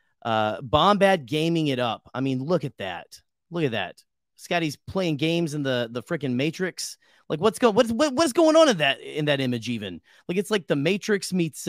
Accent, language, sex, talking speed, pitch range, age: American, English, male, 205 wpm, 125-175 Hz, 30-49